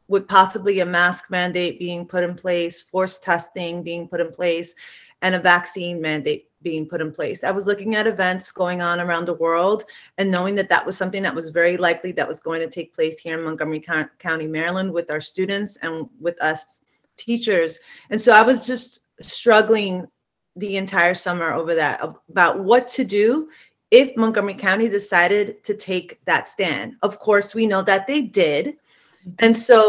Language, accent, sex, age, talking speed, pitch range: English, American, female, 30-49, 185 wpm, 170-210 Hz